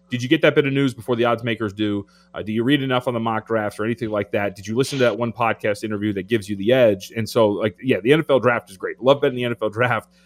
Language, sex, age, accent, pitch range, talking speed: English, male, 30-49, American, 110-145 Hz, 300 wpm